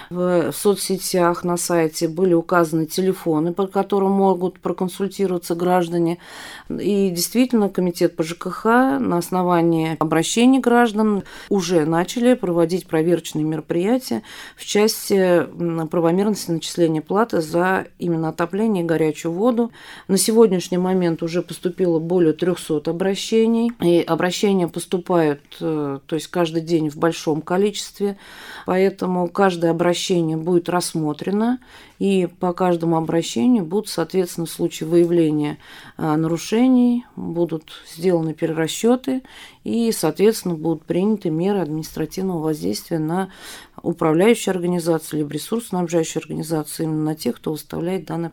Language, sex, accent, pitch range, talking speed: Russian, female, native, 165-195 Hz, 115 wpm